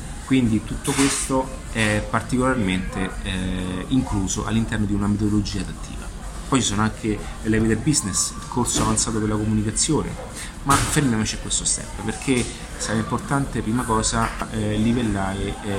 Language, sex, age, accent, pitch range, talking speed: Italian, male, 30-49, native, 95-120 Hz, 135 wpm